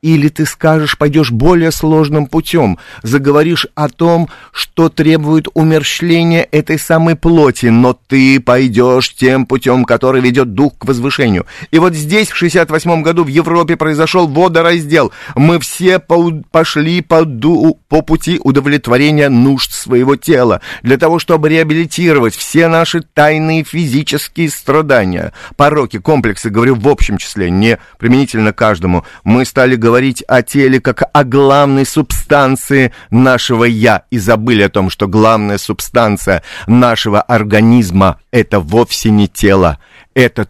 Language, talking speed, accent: Russian, 140 wpm, native